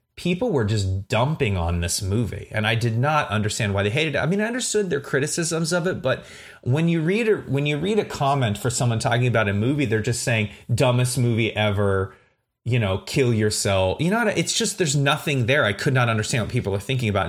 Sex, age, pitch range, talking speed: male, 30-49, 105-145 Hz, 220 wpm